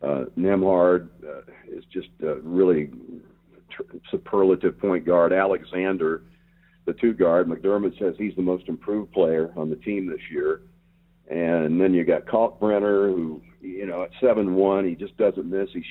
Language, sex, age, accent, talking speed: English, male, 50-69, American, 165 wpm